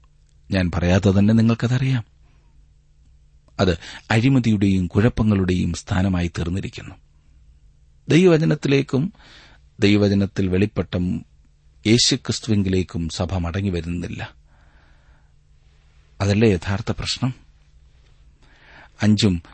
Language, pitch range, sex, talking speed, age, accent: Malayalam, 85-105 Hz, male, 40 wpm, 40-59, native